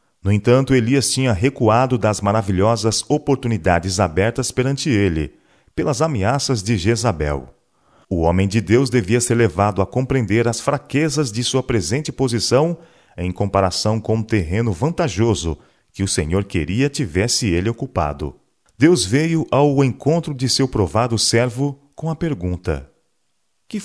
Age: 40-59